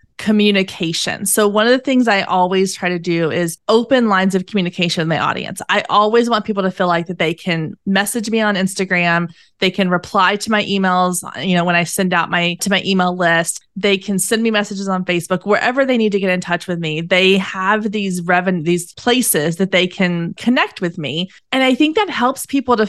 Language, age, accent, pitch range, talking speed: English, 20-39, American, 185-225 Hz, 225 wpm